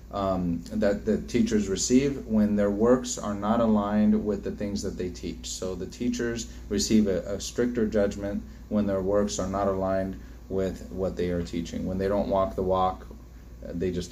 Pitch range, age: 90-105 Hz, 30-49